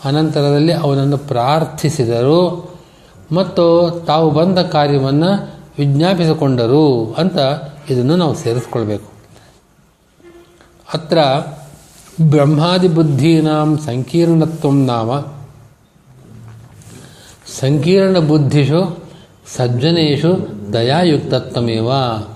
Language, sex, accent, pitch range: Kannada, male, native, 125-155 Hz